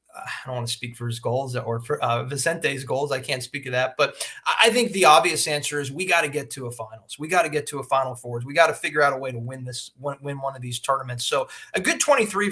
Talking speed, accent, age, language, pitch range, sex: 285 wpm, American, 30-49, English, 135-185 Hz, male